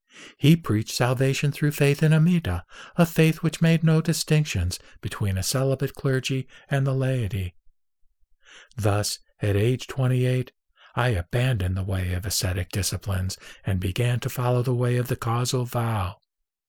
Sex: male